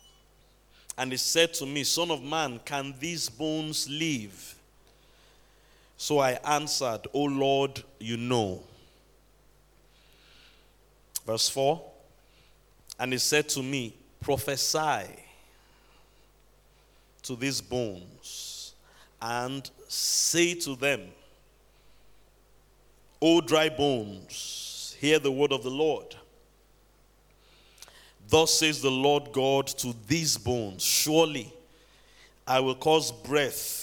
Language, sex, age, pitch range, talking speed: English, male, 50-69, 120-150 Hz, 100 wpm